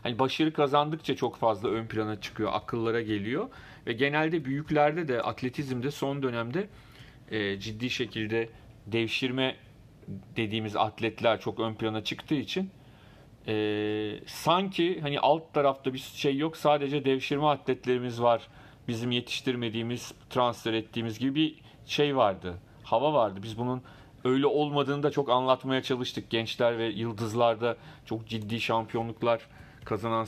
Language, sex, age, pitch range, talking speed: Turkish, male, 40-59, 115-145 Hz, 125 wpm